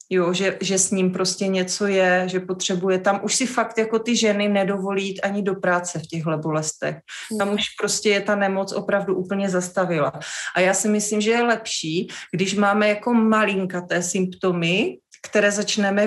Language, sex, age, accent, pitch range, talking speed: Czech, female, 30-49, native, 180-200 Hz, 180 wpm